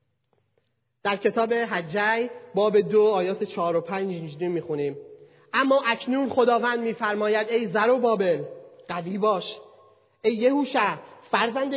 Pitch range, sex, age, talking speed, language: 195-255 Hz, male, 30-49, 115 wpm, Persian